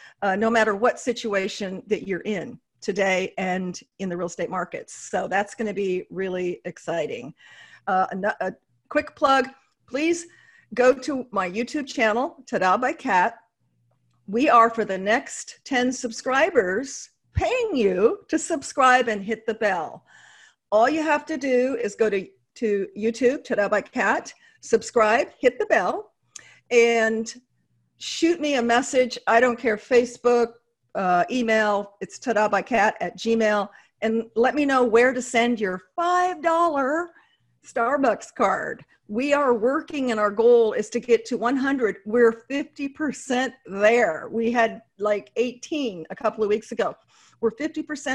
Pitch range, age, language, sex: 205-265 Hz, 50-69, English, female